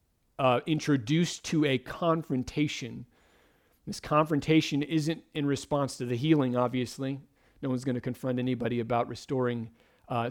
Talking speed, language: 135 wpm, English